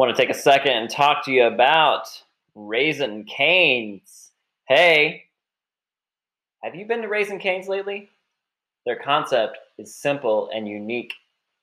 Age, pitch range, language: 20-39, 115-150 Hz, English